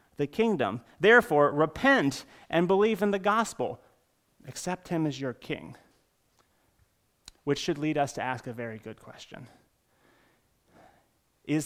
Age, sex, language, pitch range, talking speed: 30-49, male, English, 135-175 Hz, 130 wpm